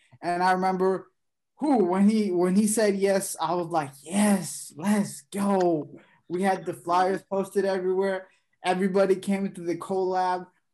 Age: 20-39